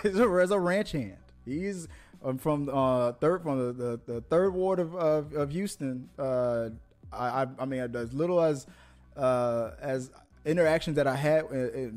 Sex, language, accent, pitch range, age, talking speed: male, English, American, 125-160 Hz, 20-39, 170 wpm